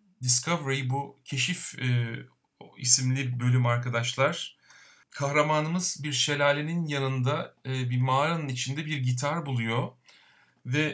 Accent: native